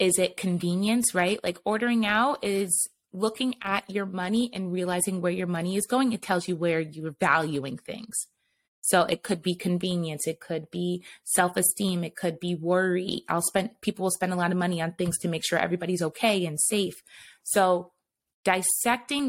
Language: English